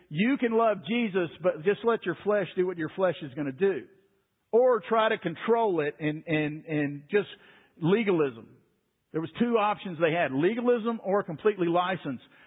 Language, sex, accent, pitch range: English, male, American, 175-220 Hz